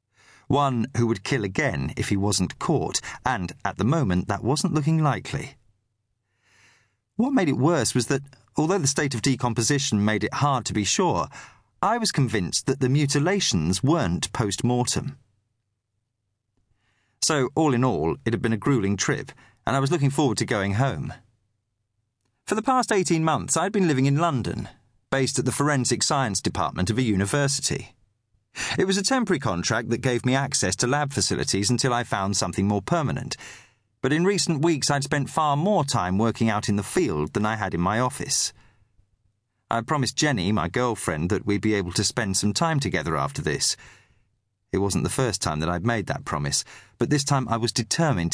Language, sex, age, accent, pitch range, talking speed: English, male, 40-59, British, 105-140 Hz, 185 wpm